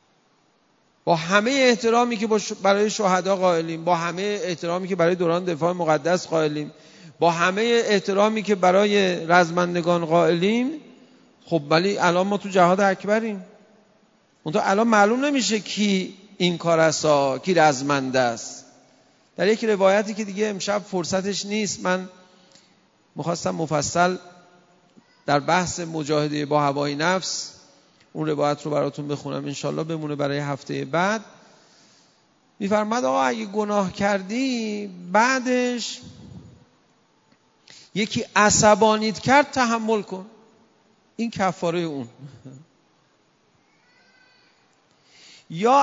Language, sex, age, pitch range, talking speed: Persian, male, 40-59, 170-220 Hz, 110 wpm